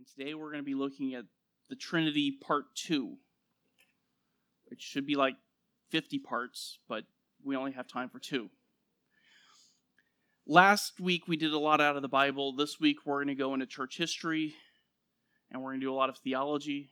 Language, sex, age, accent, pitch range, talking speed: English, male, 30-49, American, 140-180 Hz, 190 wpm